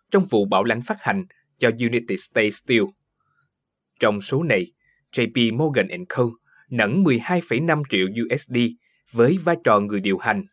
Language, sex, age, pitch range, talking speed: Vietnamese, male, 20-39, 115-175 Hz, 150 wpm